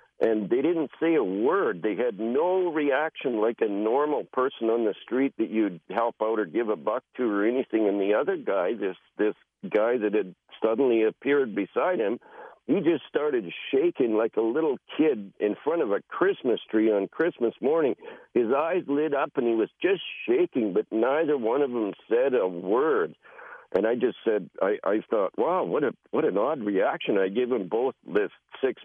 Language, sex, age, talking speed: English, male, 60-79, 200 wpm